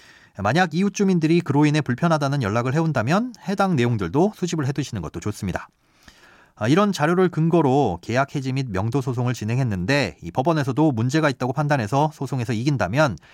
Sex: male